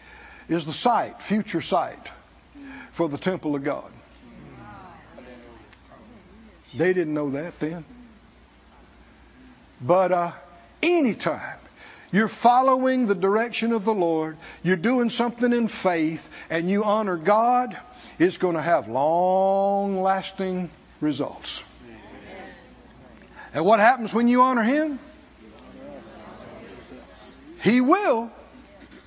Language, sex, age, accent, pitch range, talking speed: English, male, 60-79, American, 180-275 Hz, 105 wpm